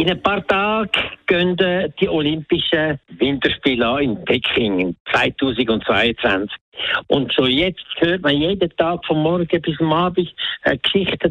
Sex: male